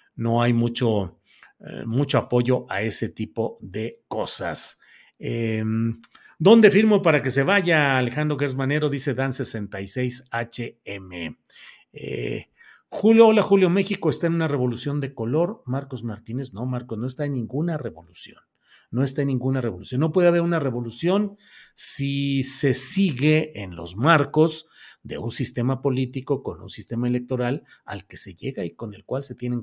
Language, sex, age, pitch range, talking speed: Spanish, male, 40-59, 115-155 Hz, 155 wpm